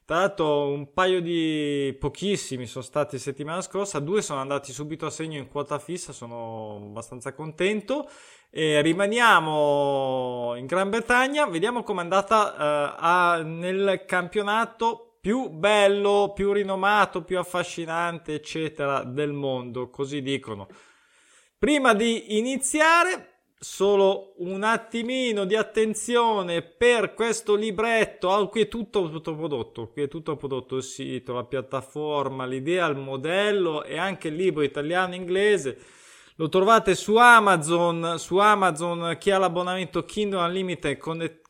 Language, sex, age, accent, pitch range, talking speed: Italian, male, 20-39, native, 145-200 Hz, 130 wpm